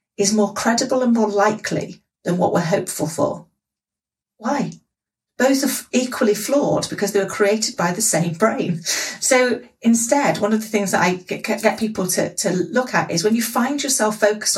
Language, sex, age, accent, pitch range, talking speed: English, female, 40-59, British, 190-225 Hz, 180 wpm